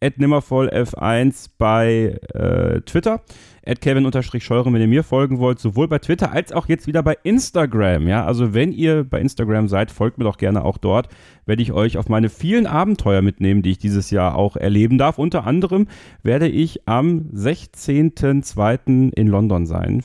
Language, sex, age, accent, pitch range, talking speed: German, male, 30-49, German, 110-150 Hz, 170 wpm